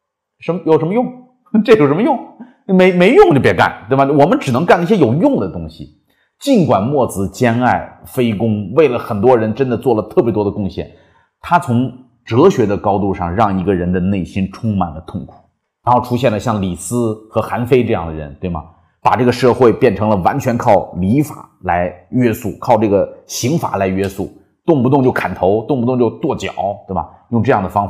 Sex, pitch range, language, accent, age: male, 95-130 Hz, Chinese, native, 30-49